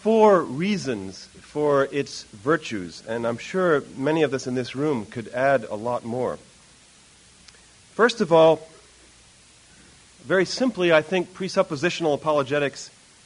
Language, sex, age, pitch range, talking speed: English, male, 40-59, 115-180 Hz, 125 wpm